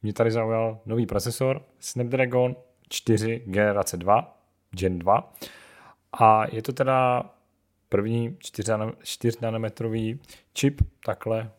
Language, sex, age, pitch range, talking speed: Czech, male, 30-49, 100-125 Hz, 115 wpm